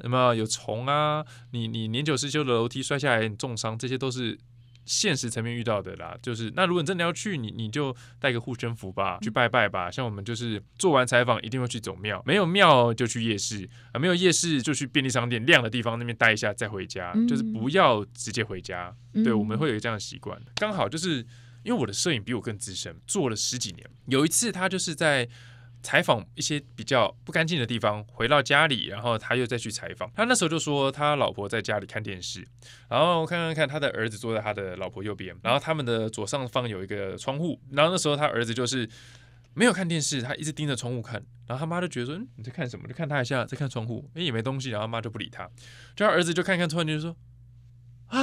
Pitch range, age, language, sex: 115-150 Hz, 20-39, Chinese, male